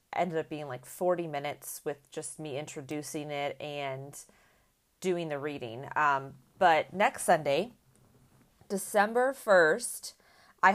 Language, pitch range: English, 155-185 Hz